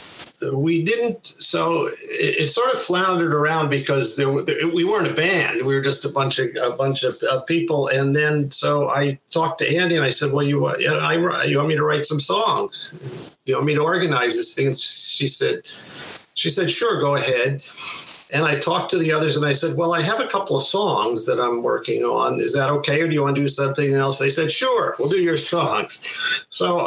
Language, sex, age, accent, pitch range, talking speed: English, male, 50-69, American, 135-190 Hz, 230 wpm